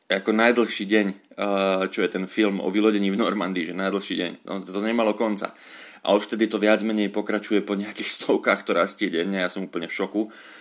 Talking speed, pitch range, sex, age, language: 205 wpm, 100-115 Hz, male, 30-49, Slovak